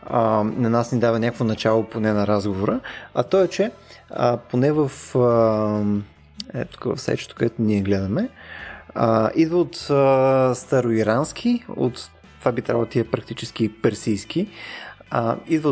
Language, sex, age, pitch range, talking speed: Bulgarian, male, 20-39, 115-145 Hz, 130 wpm